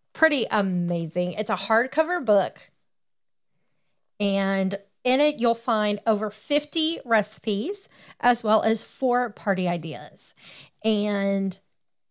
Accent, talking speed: American, 105 wpm